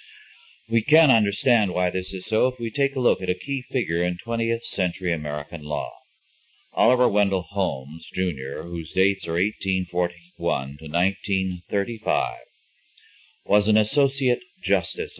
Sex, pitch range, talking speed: male, 85-115 Hz, 140 wpm